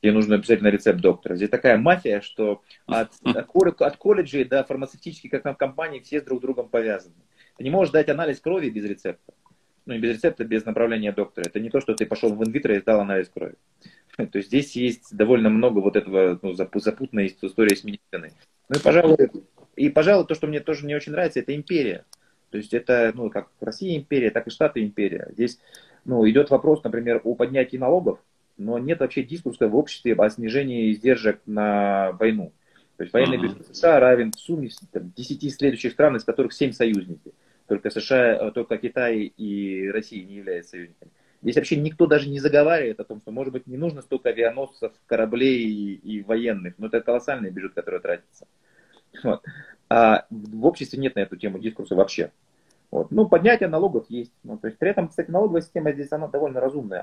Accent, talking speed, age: native, 185 wpm, 30-49